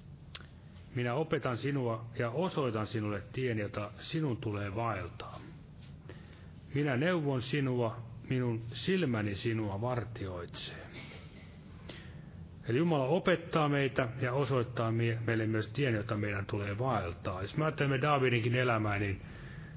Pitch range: 115-140 Hz